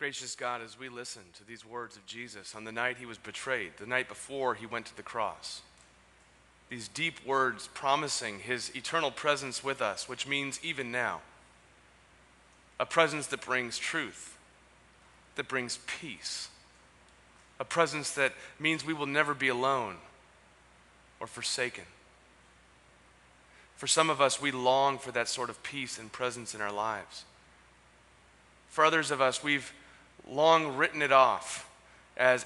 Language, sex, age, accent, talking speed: English, male, 30-49, American, 150 wpm